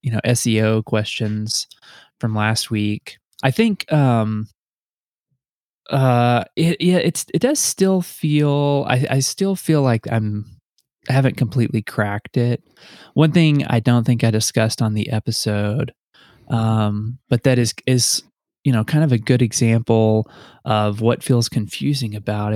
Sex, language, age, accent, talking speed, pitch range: male, English, 20-39, American, 150 wpm, 110-130 Hz